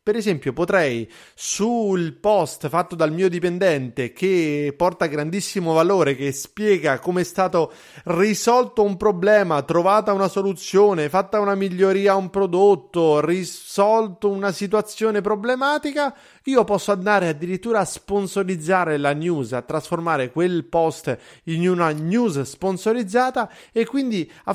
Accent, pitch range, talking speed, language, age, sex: native, 160-210 Hz, 130 wpm, Italian, 30-49, male